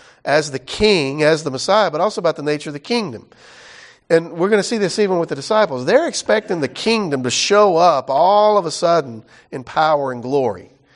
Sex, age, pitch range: male, 50-69, 135-175 Hz